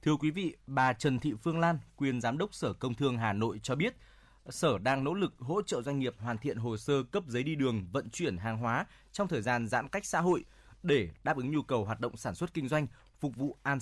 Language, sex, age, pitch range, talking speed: Vietnamese, male, 20-39, 120-155 Hz, 255 wpm